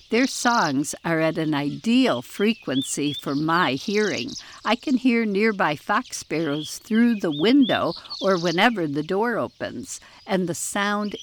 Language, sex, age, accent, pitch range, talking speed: English, female, 60-79, American, 165-220 Hz, 145 wpm